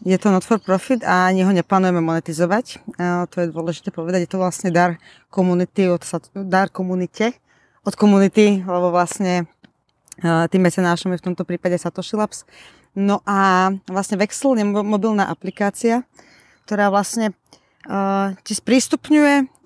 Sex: female